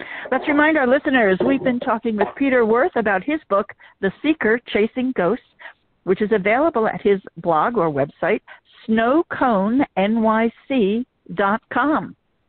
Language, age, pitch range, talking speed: English, 60-79, 180-250 Hz, 125 wpm